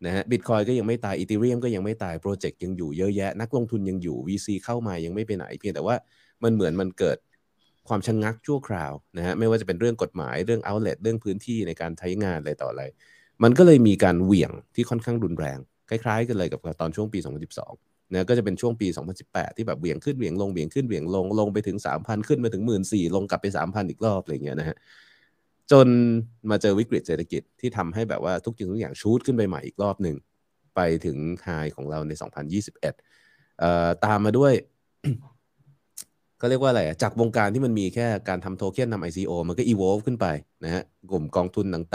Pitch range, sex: 90-115 Hz, male